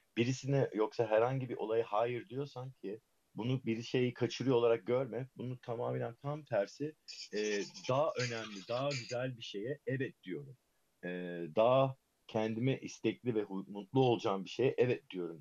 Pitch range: 100-130 Hz